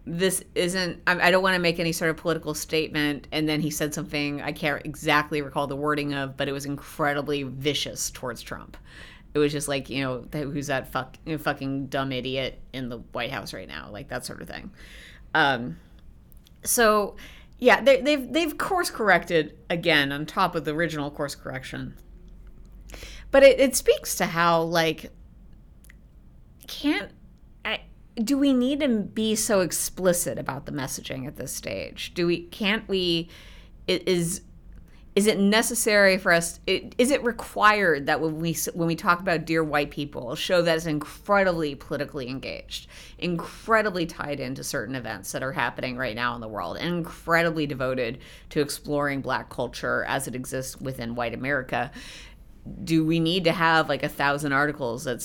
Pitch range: 135-175 Hz